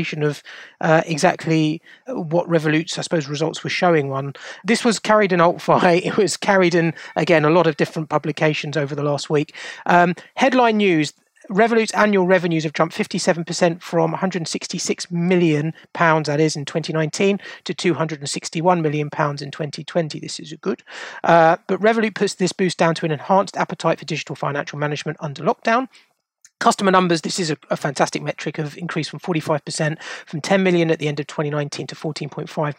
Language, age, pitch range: English, 30-49, 155-180 Hz